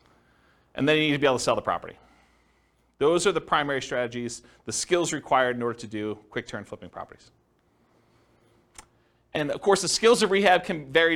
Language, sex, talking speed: English, male, 195 wpm